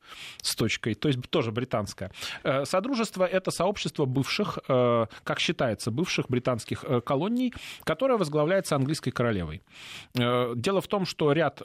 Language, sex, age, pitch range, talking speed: Russian, male, 30-49, 125-175 Hz, 125 wpm